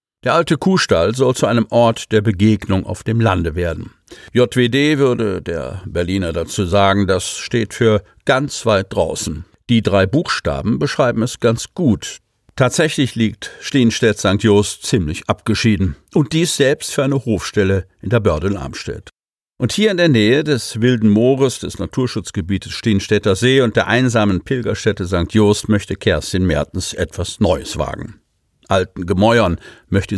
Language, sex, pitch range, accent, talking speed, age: German, male, 100-130 Hz, German, 150 wpm, 50-69